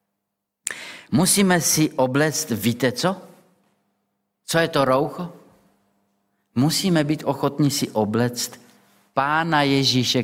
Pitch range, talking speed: 115-170 Hz, 95 wpm